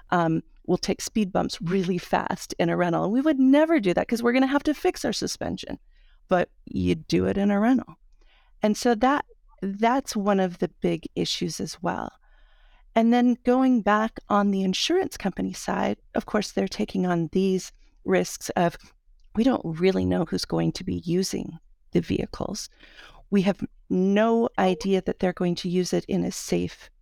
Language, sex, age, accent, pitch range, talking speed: English, female, 40-59, American, 180-235 Hz, 185 wpm